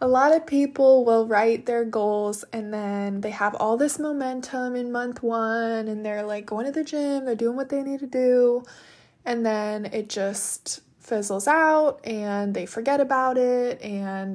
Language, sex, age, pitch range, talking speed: English, female, 20-39, 210-255 Hz, 185 wpm